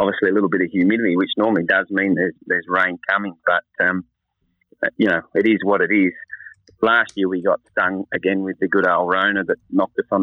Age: 30-49